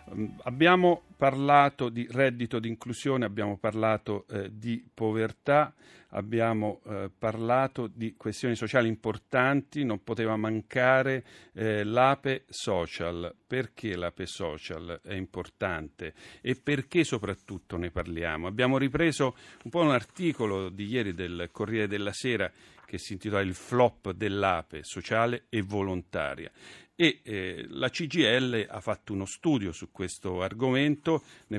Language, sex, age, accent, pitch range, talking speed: Italian, male, 50-69, native, 95-120 Hz, 125 wpm